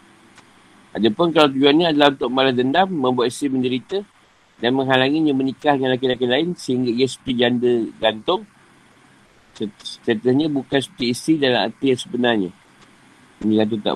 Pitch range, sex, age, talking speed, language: 110-135 Hz, male, 50-69, 140 wpm, Malay